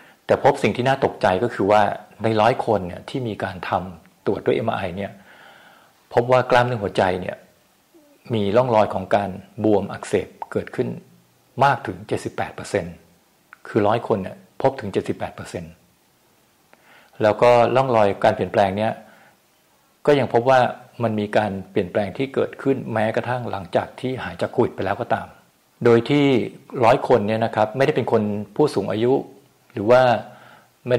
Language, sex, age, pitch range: Thai, male, 60-79, 100-125 Hz